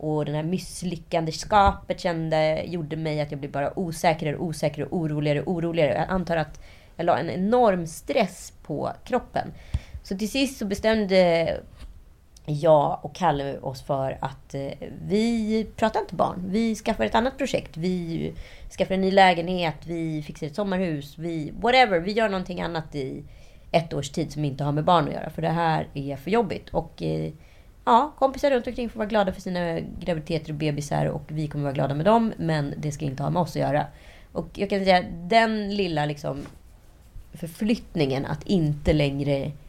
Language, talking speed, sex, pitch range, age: Swedish, 185 wpm, female, 150-195 Hz, 30-49